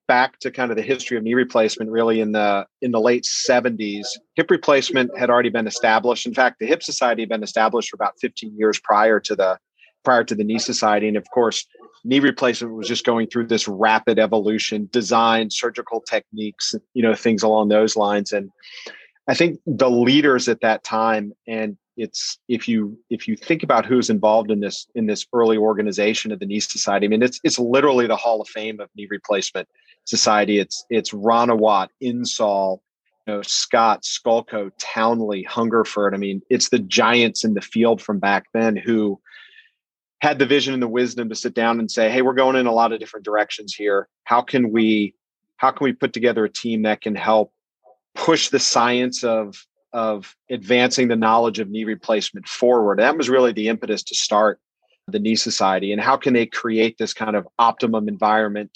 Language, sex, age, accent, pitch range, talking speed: English, male, 40-59, American, 105-120 Hz, 195 wpm